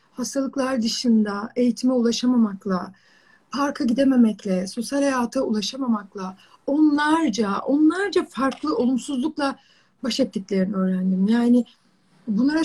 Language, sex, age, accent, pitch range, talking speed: Turkish, female, 30-49, native, 220-305 Hz, 85 wpm